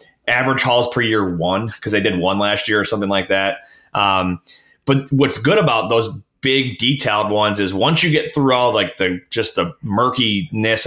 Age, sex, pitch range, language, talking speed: 20-39, male, 105-145 Hz, English, 195 wpm